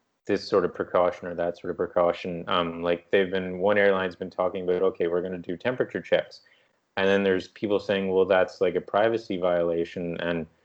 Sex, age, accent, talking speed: male, 30-49, American, 210 wpm